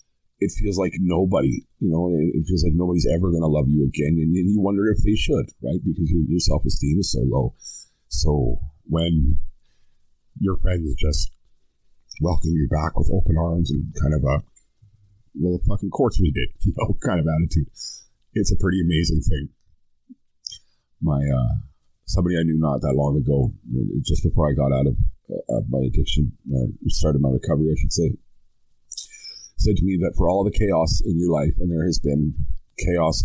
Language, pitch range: English, 75-90 Hz